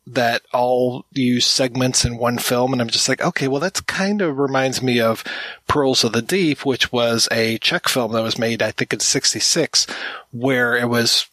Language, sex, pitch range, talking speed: English, male, 115-135 Hz, 200 wpm